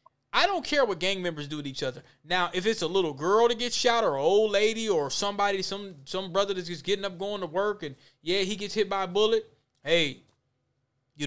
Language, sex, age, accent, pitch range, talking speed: English, male, 20-39, American, 150-220 Hz, 240 wpm